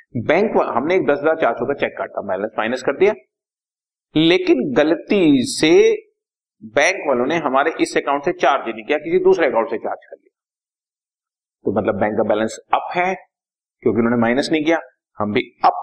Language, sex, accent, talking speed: Hindi, male, native, 185 wpm